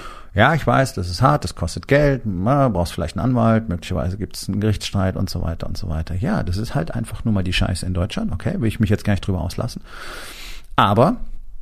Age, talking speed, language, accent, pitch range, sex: 40-59, 230 wpm, German, German, 90-115 Hz, male